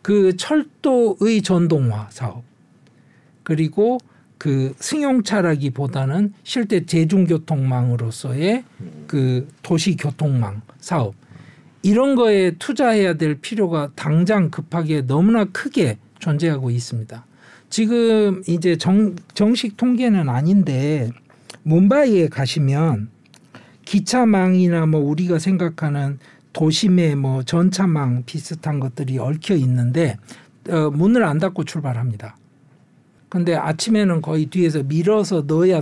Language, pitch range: Korean, 140-200 Hz